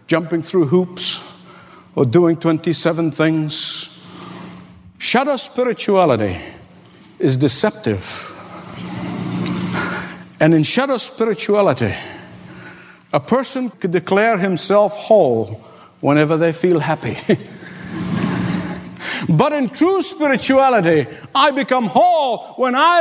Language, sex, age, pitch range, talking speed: English, male, 50-69, 180-275 Hz, 90 wpm